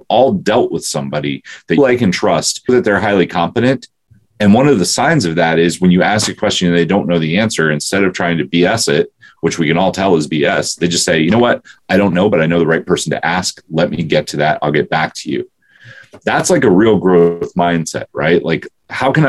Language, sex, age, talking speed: English, male, 30-49, 255 wpm